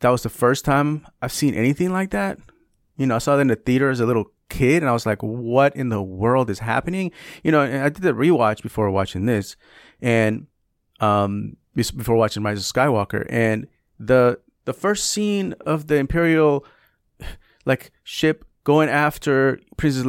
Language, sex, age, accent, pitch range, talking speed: English, male, 30-49, American, 105-140 Hz, 185 wpm